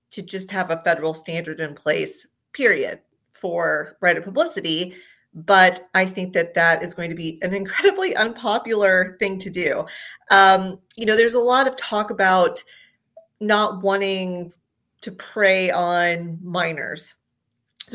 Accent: American